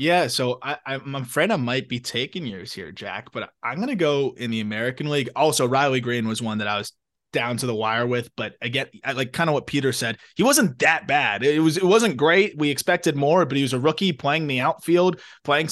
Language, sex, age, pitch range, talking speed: English, male, 20-39, 125-170 Hz, 240 wpm